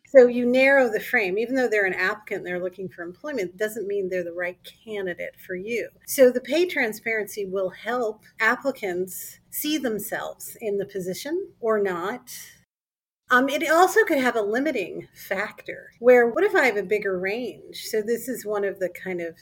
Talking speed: 185 wpm